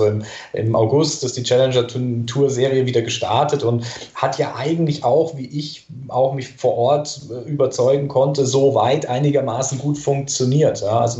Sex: male